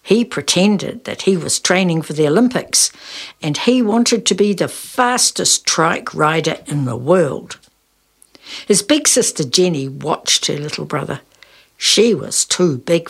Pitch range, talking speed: 160-240 Hz, 150 wpm